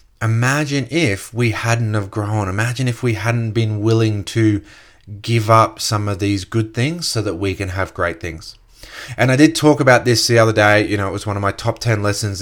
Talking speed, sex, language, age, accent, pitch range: 220 wpm, male, English, 20-39, Australian, 100-115 Hz